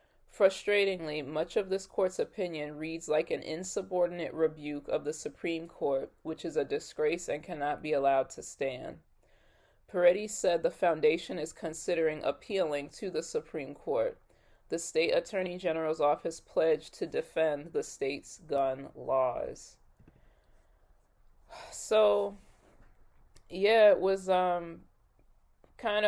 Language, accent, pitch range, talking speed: English, American, 150-195 Hz, 125 wpm